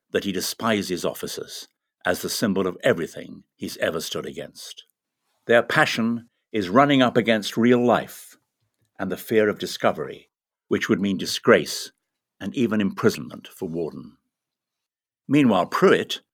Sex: male